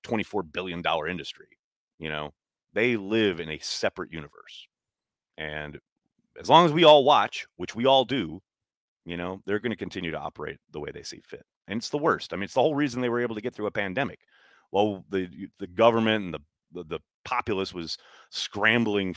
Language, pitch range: English, 90-125 Hz